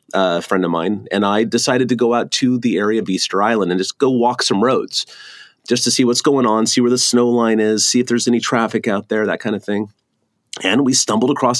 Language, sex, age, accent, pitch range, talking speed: English, male, 30-49, American, 95-125 Hz, 260 wpm